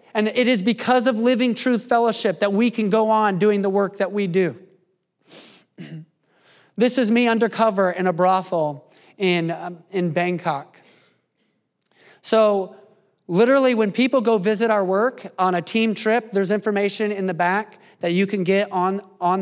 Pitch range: 165-210 Hz